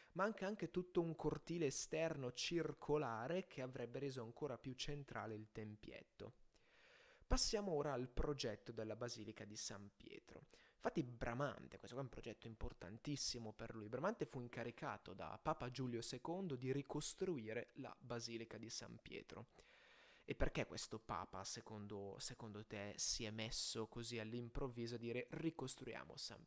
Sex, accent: male, native